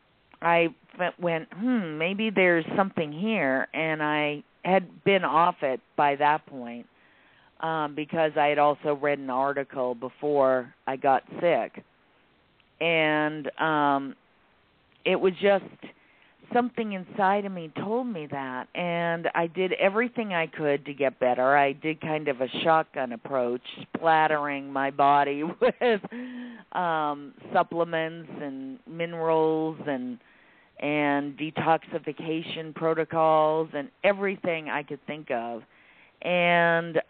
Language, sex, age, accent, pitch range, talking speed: English, female, 50-69, American, 145-180 Hz, 120 wpm